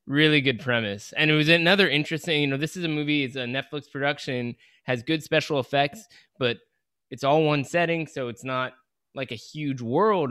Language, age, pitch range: English, 20-39, 105-135 Hz